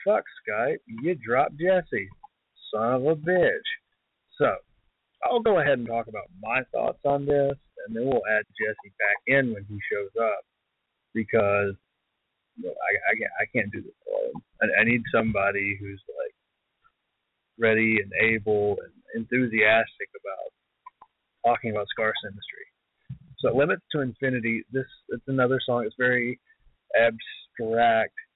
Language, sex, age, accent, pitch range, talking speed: English, male, 30-49, American, 110-145 Hz, 145 wpm